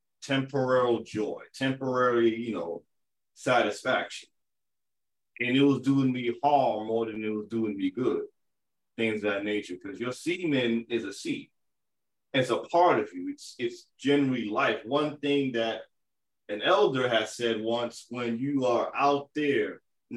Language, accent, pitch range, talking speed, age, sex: English, American, 115-140 Hz, 155 wpm, 30-49, male